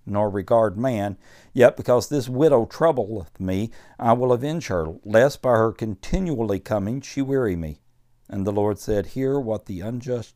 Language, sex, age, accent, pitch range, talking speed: English, male, 60-79, American, 105-130 Hz, 170 wpm